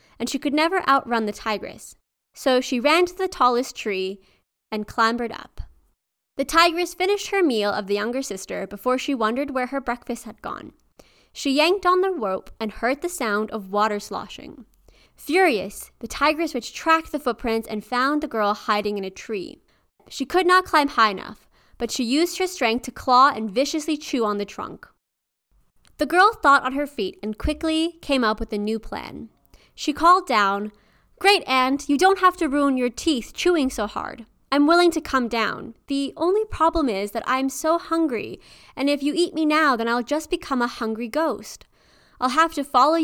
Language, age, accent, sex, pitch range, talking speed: English, 20-39, American, female, 225-320 Hz, 195 wpm